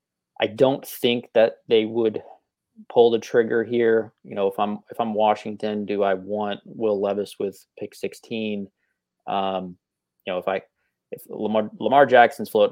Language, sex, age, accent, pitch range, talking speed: English, male, 20-39, American, 95-110 Hz, 165 wpm